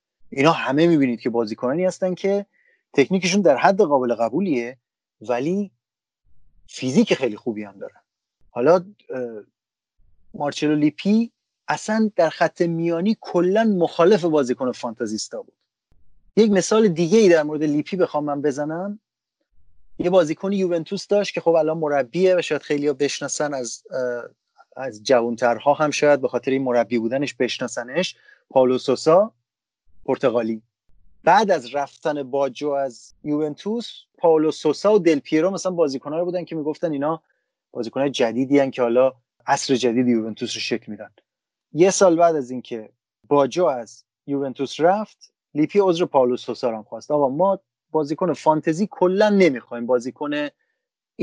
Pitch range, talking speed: 125-180 Hz, 135 wpm